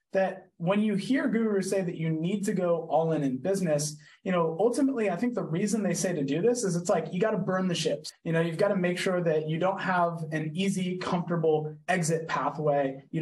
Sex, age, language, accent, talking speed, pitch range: male, 20-39, English, American, 240 wpm, 155-195 Hz